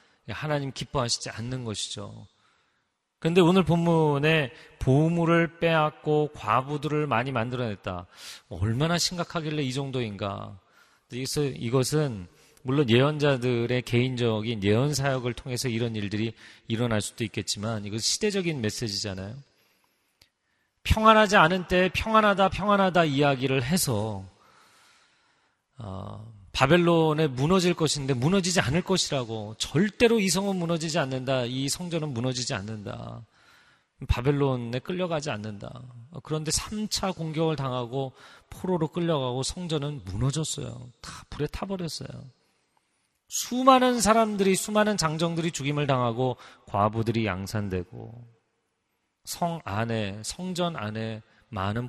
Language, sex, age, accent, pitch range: Korean, male, 40-59, native, 115-165 Hz